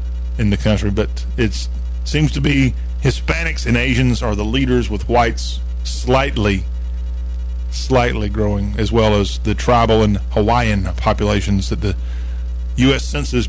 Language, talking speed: English, 140 wpm